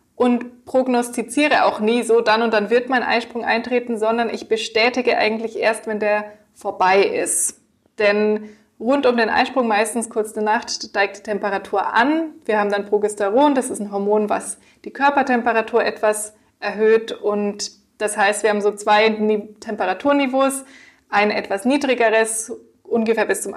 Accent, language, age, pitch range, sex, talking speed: German, German, 20-39, 205-235 Hz, female, 155 wpm